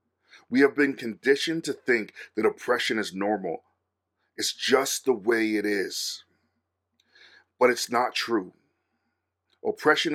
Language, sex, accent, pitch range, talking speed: English, male, American, 105-140 Hz, 125 wpm